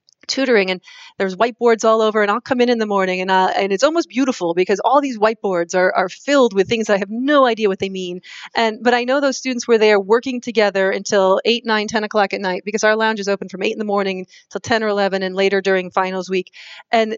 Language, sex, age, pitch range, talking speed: English, female, 30-49, 190-245 Hz, 255 wpm